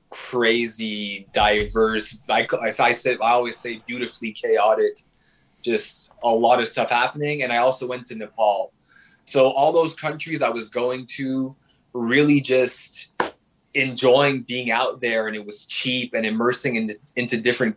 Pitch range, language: 120-135 Hz, English